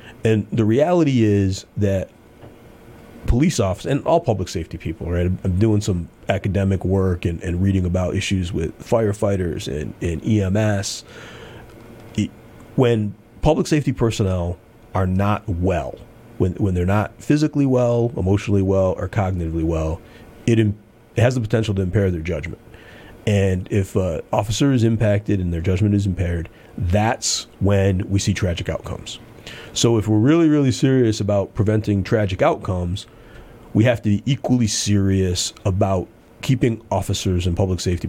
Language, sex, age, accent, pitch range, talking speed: English, male, 30-49, American, 95-115 Hz, 150 wpm